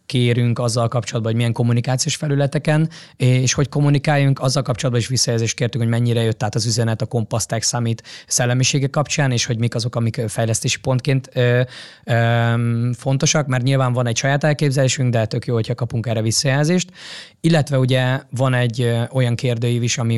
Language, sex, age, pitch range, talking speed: Hungarian, male, 20-39, 115-130 Hz, 170 wpm